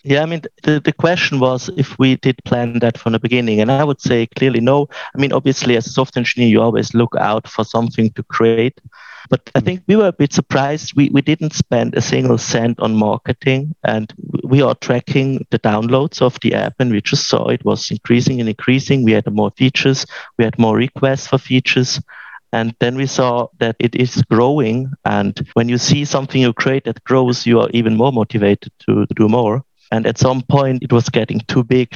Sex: male